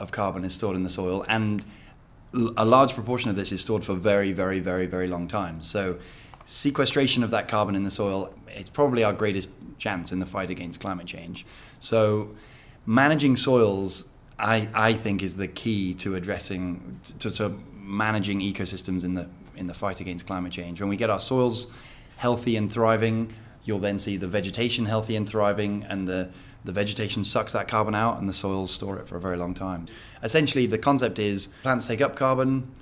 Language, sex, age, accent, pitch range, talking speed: English, male, 20-39, British, 95-115 Hz, 195 wpm